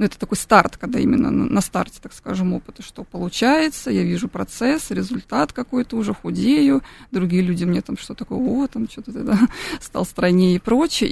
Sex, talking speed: female, 185 wpm